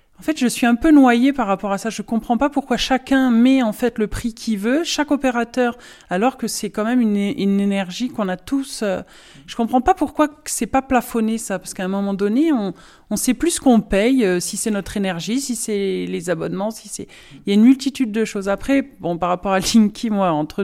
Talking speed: 240 wpm